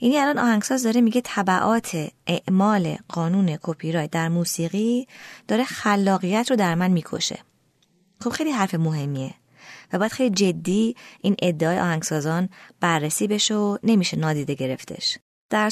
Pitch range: 165-220 Hz